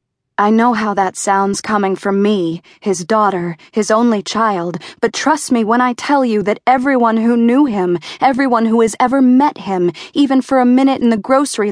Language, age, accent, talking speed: English, 20-39, American, 195 wpm